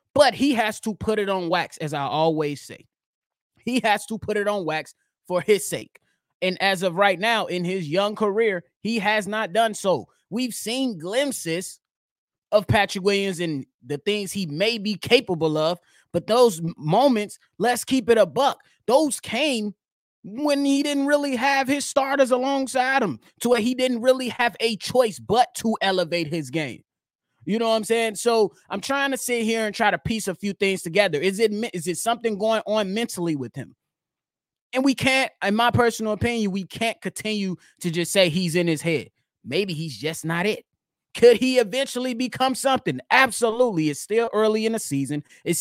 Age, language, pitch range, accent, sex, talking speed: 20-39, English, 175-230 Hz, American, male, 190 wpm